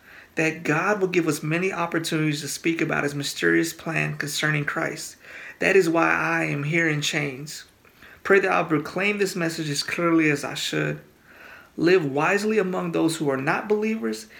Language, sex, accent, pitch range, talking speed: English, male, American, 145-170 Hz, 180 wpm